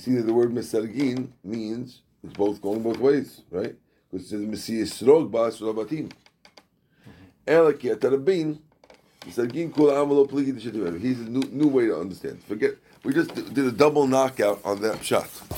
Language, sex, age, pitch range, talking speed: English, male, 50-69, 110-140 Hz, 125 wpm